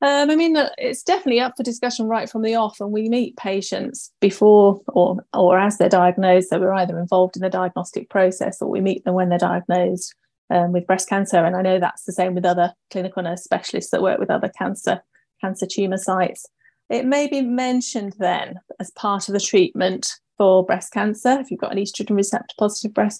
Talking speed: 210 wpm